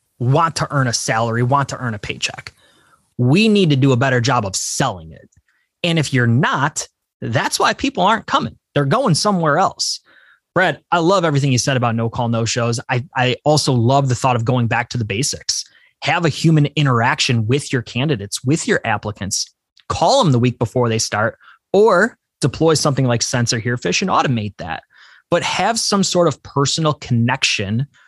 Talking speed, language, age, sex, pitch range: 190 wpm, English, 20-39, male, 120-155 Hz